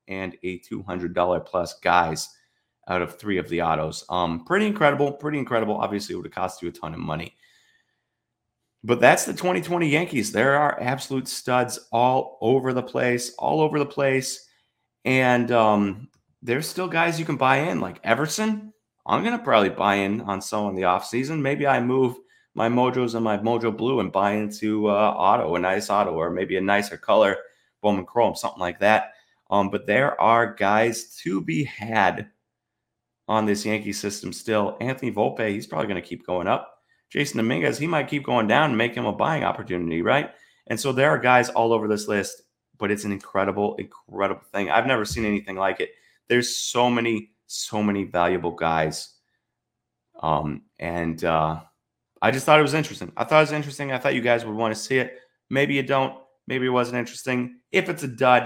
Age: 30-49